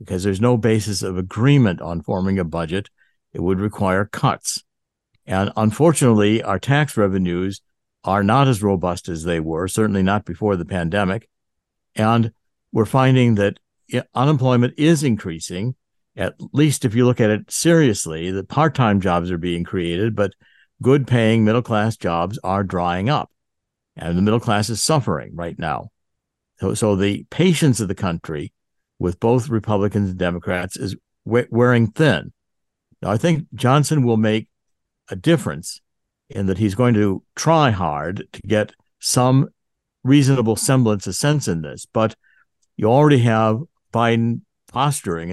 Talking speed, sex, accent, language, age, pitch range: 150 wpm, male, American, English, 60-79, 95-125 Hz